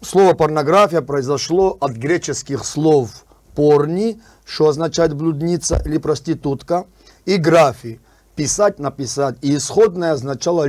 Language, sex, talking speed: Russian, male, 135 wpm